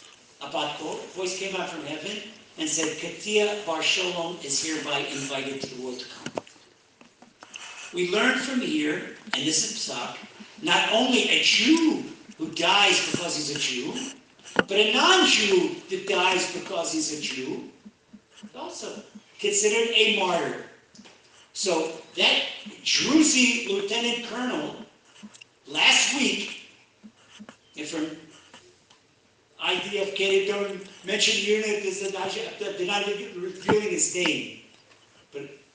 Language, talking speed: English, 115 wpm